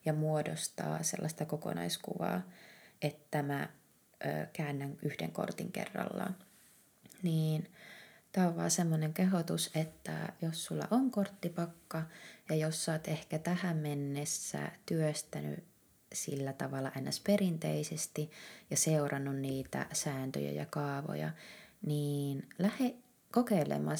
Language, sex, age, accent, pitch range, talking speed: Finnish, female, 20-39, native, 140-170 Hz, 105 wpm